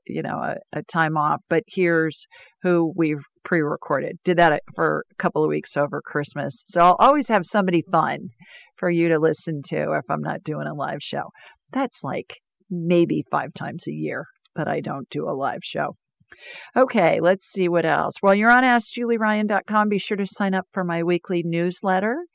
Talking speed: 190 wpm